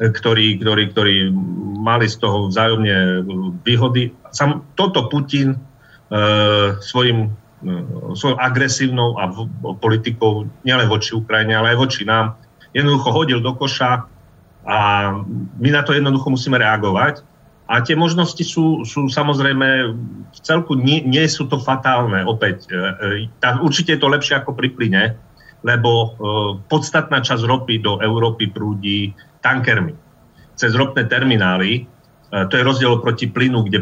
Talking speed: 135 wpm